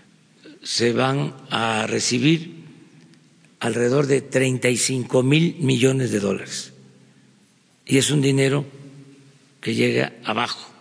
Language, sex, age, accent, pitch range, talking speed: Spanish, male, 50-69, Mexican, 125-165 Hz, 100 wpm